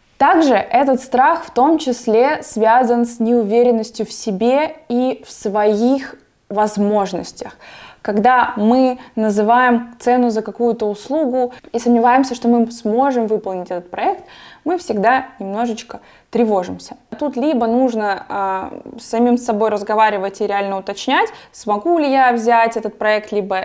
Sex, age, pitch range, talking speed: female, 20-39, 210-260 Hz, 130 wpm